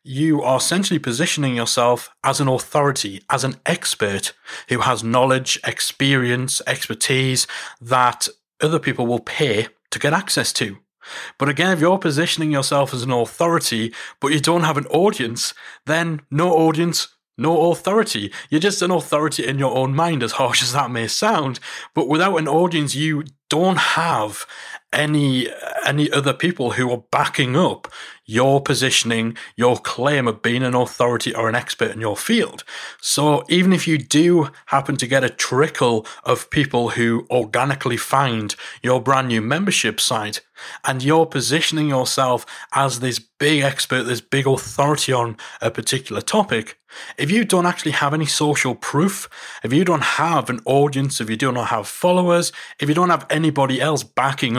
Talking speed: 165 wpm